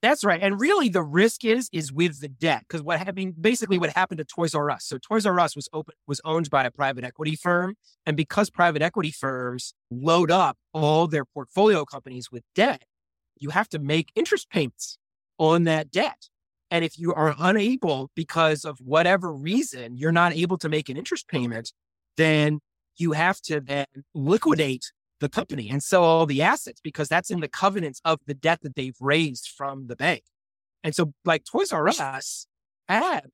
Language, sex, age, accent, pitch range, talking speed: English, male, 30-49, American, 140-180 Hz, 195 wpm